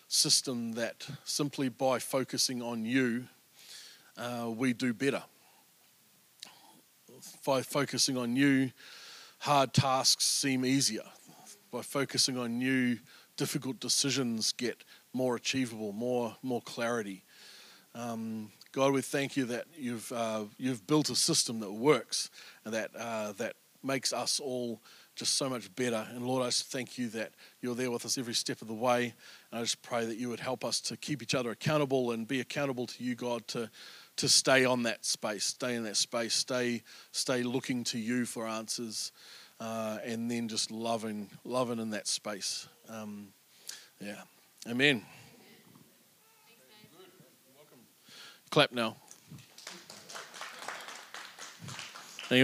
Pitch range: 115-130 Hz